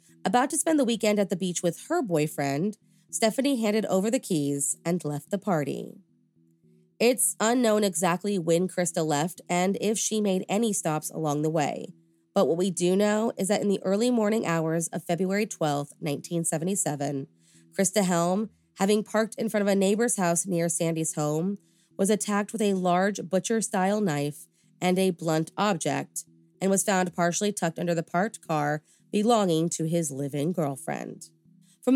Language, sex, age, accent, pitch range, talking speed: English, female, 20-39, American, 165-210 Hz, 170 wpm